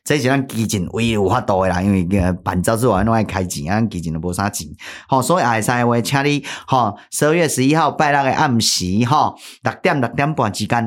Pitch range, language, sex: 95-120 Hz, Chinese, male